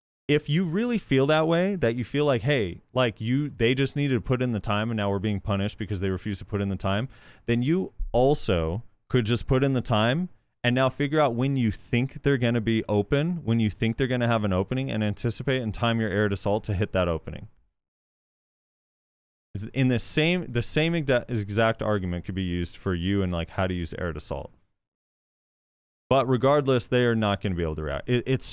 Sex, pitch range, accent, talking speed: male, 95-120 Hz, American, 225 wpm